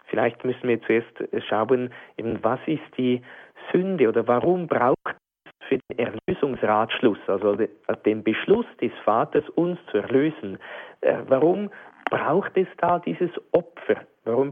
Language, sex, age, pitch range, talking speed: German, male, 50-69, 120-160 Hz, 130 wpm